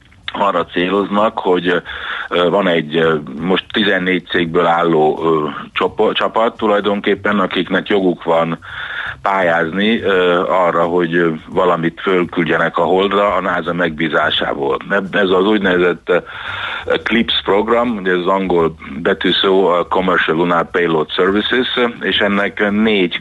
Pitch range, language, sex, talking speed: 85-100 Hz, Hungarian, male, 105 wpm